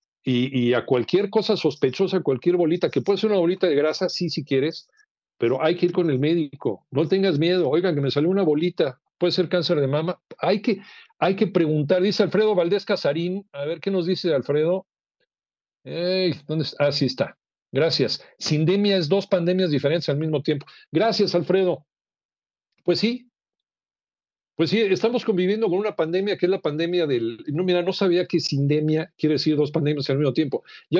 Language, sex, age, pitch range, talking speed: Spanish, male, 50-69, 135-185 Hz, 195 wpm